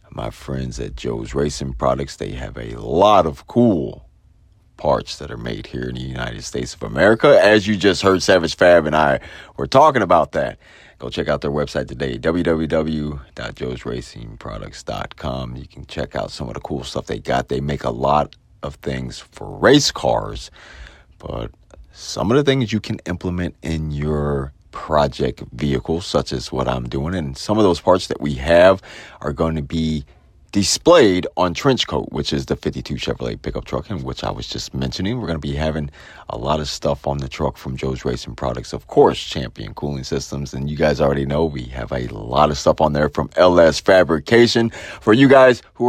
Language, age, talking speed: English, 40-59, 195 wpm